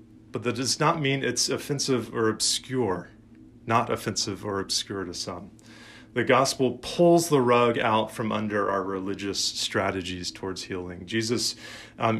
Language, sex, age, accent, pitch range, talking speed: English, male, 30-49, American, 110-130 Hz, 150 wpm